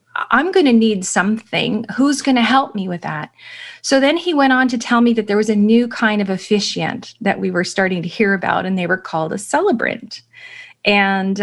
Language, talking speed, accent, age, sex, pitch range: English, 220 wpm, American, 40-59, female, 185-235 Hz